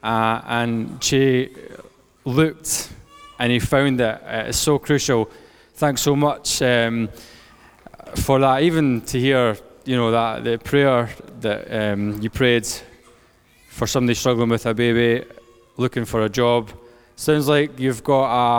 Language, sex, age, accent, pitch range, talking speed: English, male, 20-39, British, 115-140 Hz, 145 wpm